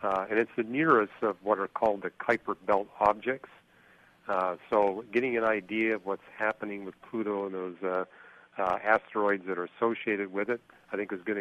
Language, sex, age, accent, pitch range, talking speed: English, male, 50-69, American, 95-115 Hz, 195 wpm